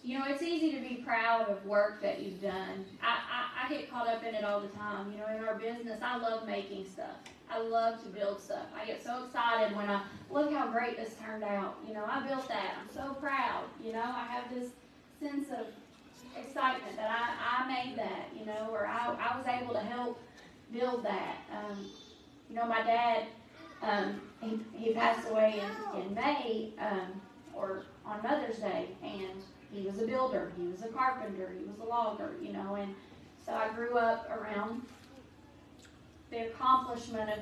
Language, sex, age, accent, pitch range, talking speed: English, female, 30-49, American, 205-245 Hz, 195 wpm